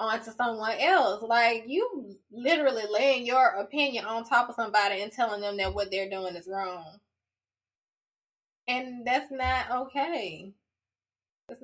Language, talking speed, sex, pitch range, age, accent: English, 140 wpm, female, 205-275 Hz, 20-39, American